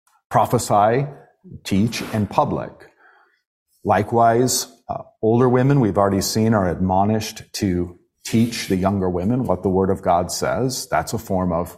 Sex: male